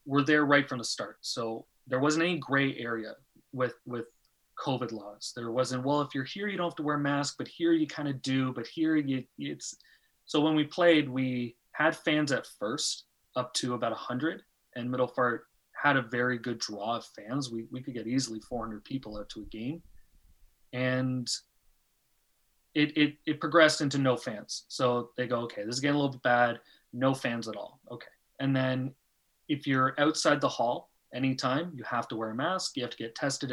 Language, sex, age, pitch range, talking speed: English, male, 30-49, 120-145 Hz, 210 wpm